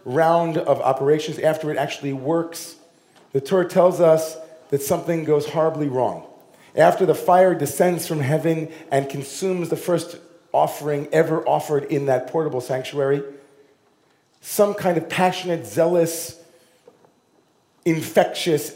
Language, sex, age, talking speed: English, male, 40-59, 125 wpm